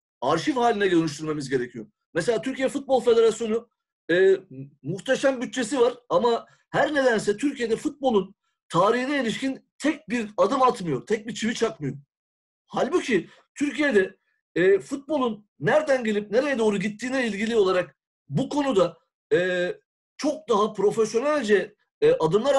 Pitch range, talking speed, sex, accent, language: 195-265 Hz, 120 wpm, male, native, Turkish